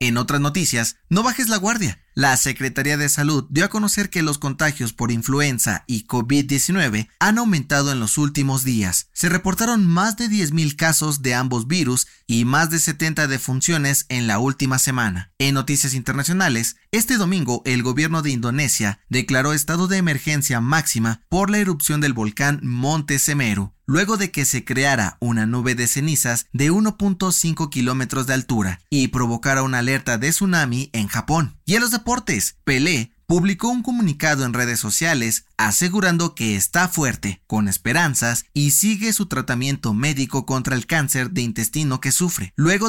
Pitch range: 120-165 Hz